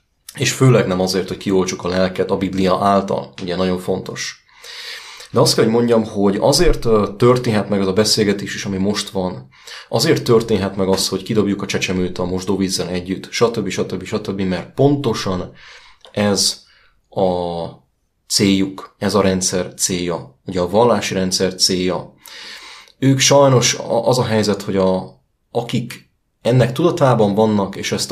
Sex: male